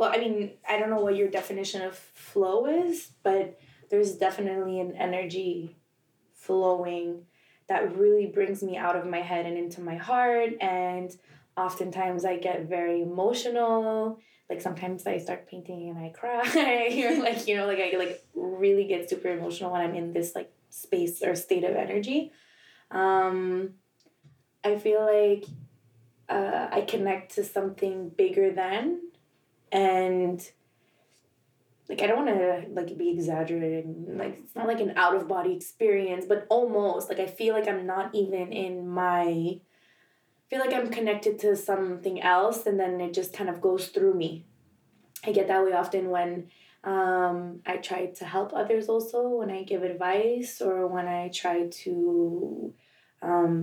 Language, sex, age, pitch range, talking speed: English, female, 20-39, 180-215 Hz, 160 wpm